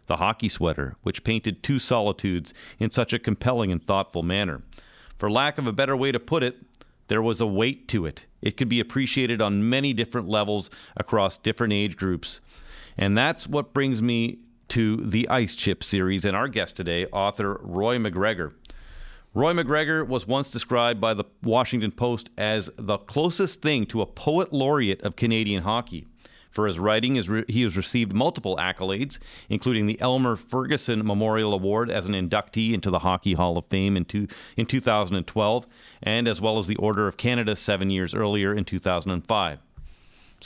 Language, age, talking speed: English, 40-59, 170 wpm